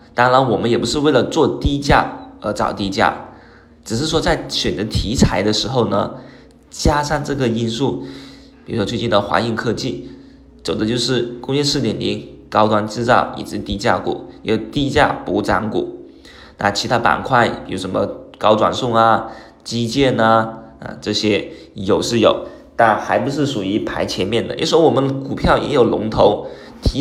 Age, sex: 20-39, male